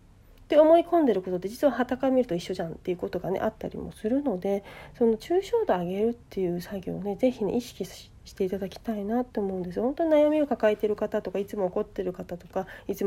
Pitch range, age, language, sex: 185-275 Hz, 40-59, Japanese, female